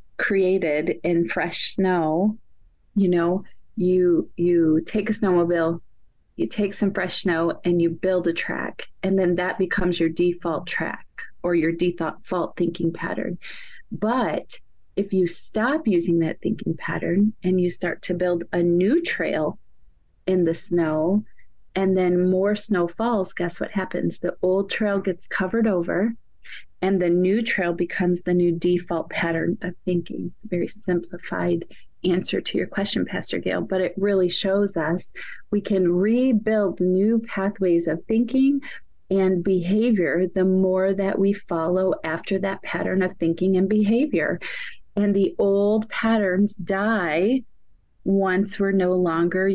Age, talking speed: 30-49, 145 wpm